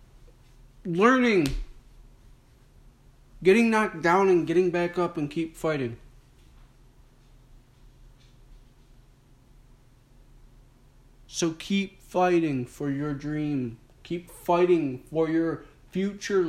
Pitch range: 130-160 Hz